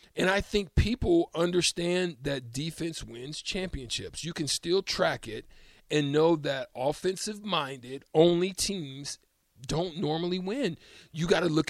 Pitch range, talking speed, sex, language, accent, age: 140-180 Hz, 145 wpm, male, English, American, 40-59